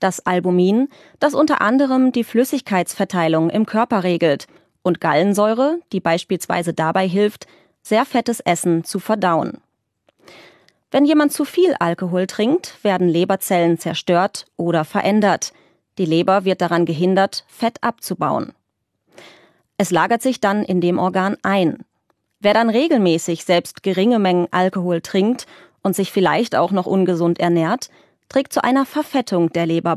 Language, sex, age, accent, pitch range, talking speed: English, female, 20-39, German, 175-235 Hz, 135 wpm